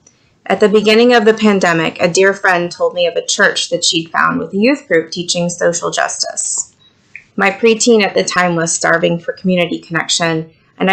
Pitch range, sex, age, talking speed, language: 170-200 Hz, female, 30-49, 190 wpm, English